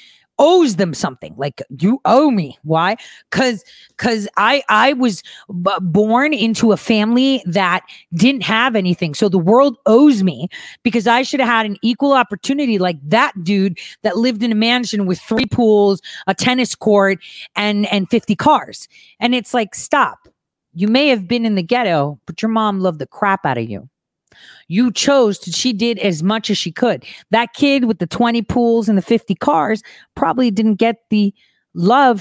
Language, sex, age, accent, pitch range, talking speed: English, female, 40-59, American, 200-270 Hz, 180 wpm